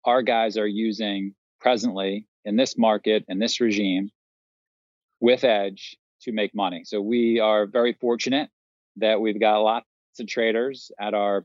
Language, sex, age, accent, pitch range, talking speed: English, male, 40-59, American, 100-120 Hz, 150 wpm